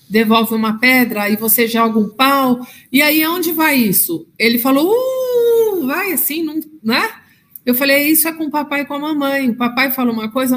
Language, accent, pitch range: Portuguese, Brazilian, 215-275 Hz